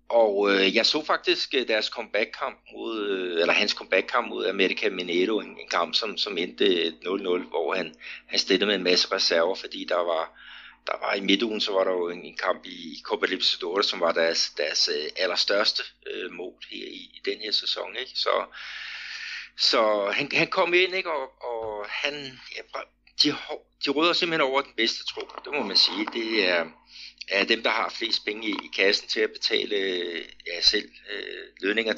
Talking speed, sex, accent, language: 190 wpm, male, native, Danish